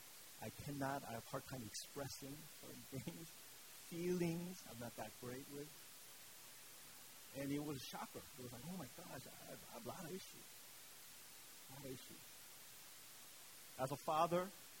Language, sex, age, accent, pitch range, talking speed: English, male, 40-59, American, 115-140 Hz, 165 wpm